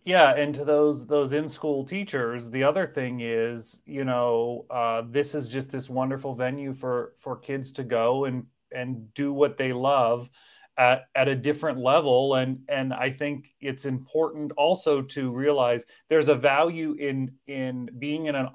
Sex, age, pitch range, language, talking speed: male, 30-49, 120-145 Hz, English, 175 wpm